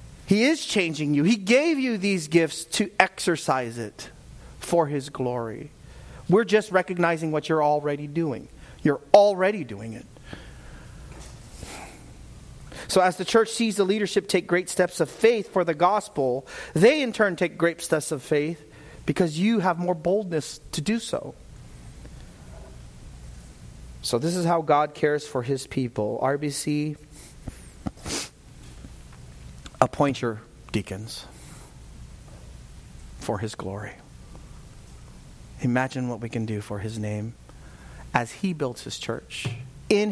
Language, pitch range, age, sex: English, 120-180 Hz, 40-59, male